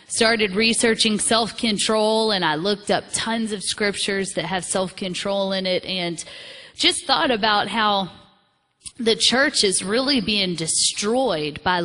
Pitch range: 180-225 Hz